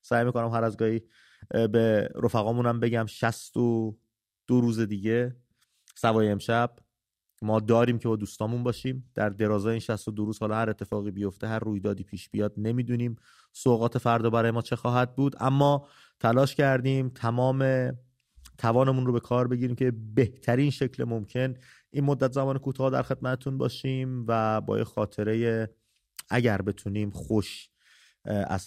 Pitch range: 105-125 Hz